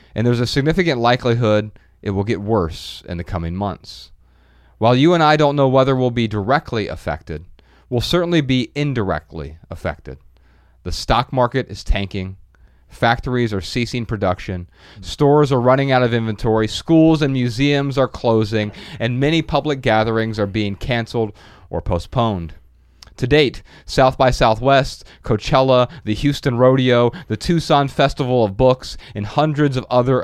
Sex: male